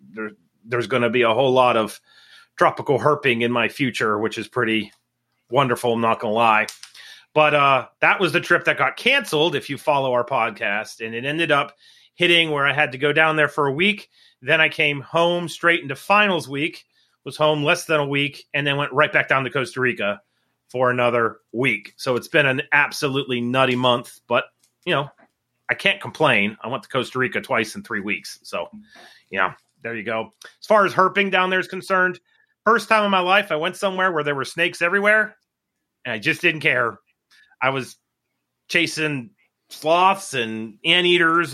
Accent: American